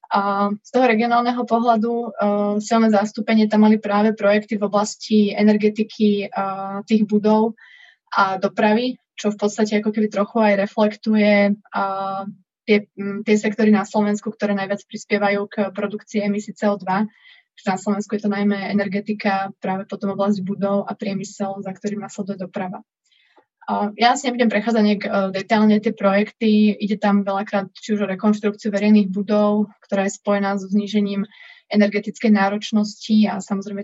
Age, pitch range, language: 20-39, 200-215 Hz, Slovak